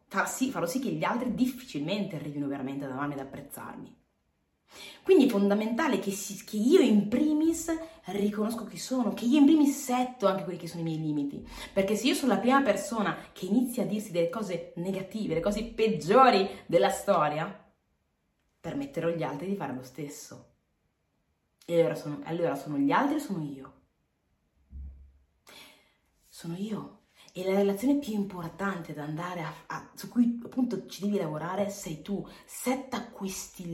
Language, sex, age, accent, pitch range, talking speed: Italian, female, 30-49, native, 150-225 Hz, 165 wpm